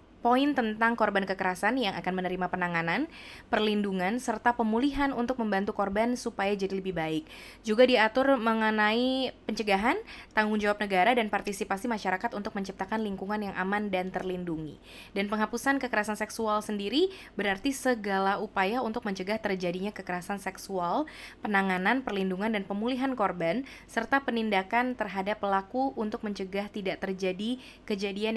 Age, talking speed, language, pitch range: 20-39, 130 wpm, Indonesian, 195-240 Hz